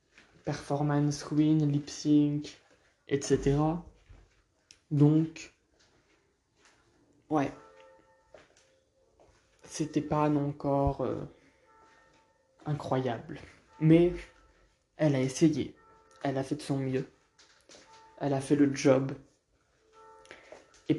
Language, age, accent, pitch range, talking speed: French, 20-39, French, 145-165 Hz, 75 wpm